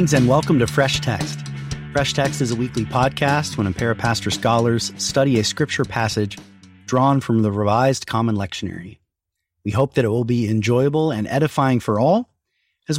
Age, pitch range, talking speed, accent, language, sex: 30-49, 105-135 Hz, 180 wpm, American, English, male